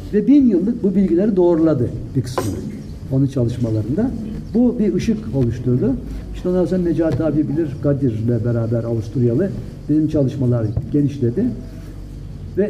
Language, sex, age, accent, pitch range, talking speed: Turkish, male, 60-79, native, 115-170 Hz, 130 wpm